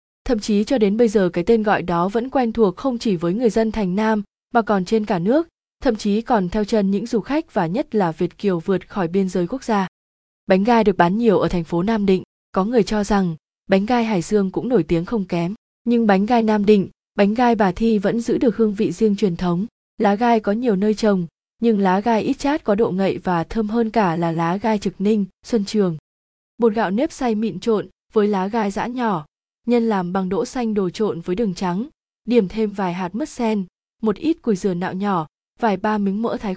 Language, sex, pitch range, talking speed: Vietnamese, female, 185-230 Hz, 240 wpm